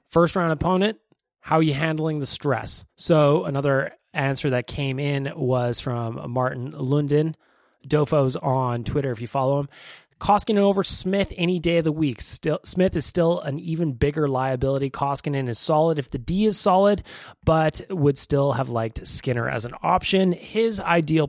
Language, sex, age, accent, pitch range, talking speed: English, male, 20-39, American, 125-160 Hz, 170 wpm